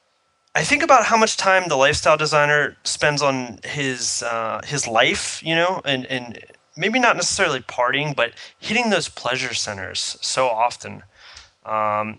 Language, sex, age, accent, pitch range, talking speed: English, male, 20-39, American, 115-155 Hz, 155 wpm